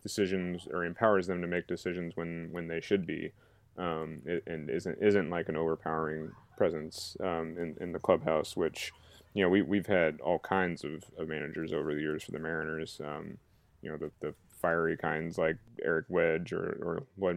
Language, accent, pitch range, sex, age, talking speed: English, American, 85-95 Hz, male, 20-39, 195 wpm